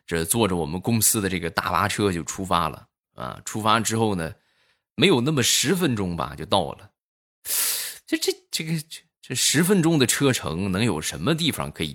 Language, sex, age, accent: Chinese, male, 20-39, native